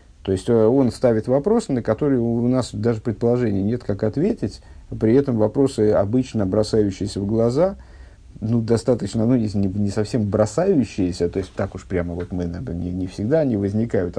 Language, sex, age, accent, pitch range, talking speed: Russian, male, 50-69, native, 100-130 Hz, 175 wpm